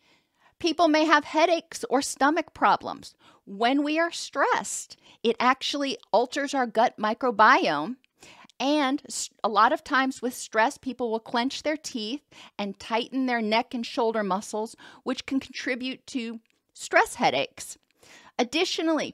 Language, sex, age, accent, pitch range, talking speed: English, female, 40-59, American, 220-280 Hz, 135 wpm